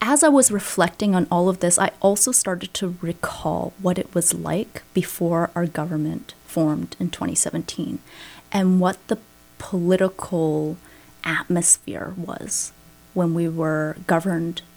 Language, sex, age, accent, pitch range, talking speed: English, female, 30-49, American, 160-200 Hz, 135 wpm